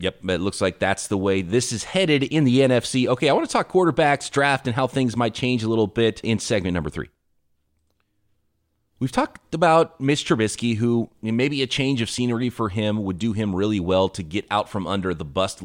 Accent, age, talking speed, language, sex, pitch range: American, 30-49, 220 wpm, English, male, 95-125 Hz